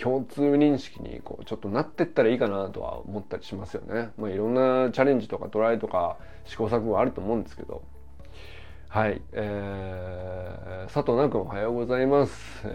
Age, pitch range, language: 20-39, 95-140 Hz, Japanese